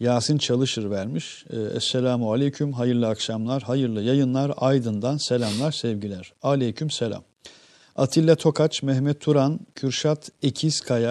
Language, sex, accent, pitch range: Turkish, male, native, 115-140 Hz